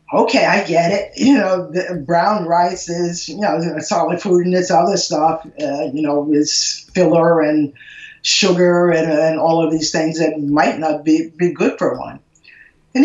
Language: English